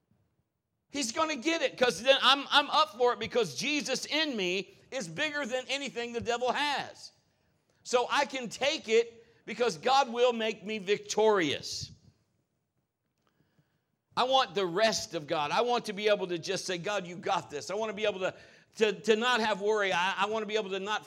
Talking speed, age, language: 200 wpm, 60-79, English